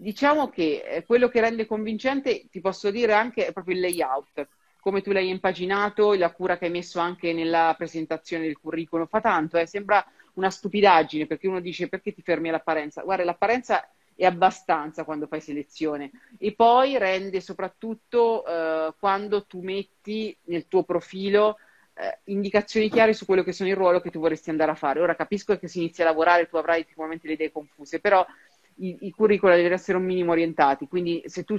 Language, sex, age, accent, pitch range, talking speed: Italian, female, 30-49, native, 165-200 Hz, 190 wpm